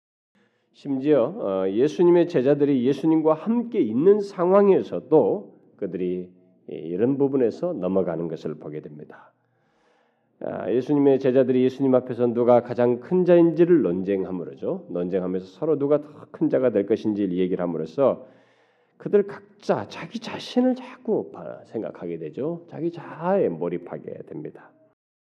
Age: 40-59